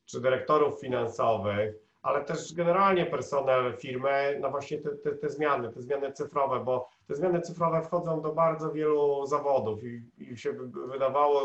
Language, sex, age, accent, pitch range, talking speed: Polish, male, 40-59, native, 125-140 Hz, 160 wpm